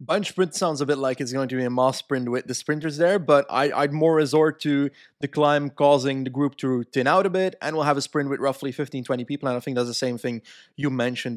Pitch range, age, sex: 135-160 Hz, 20-39, male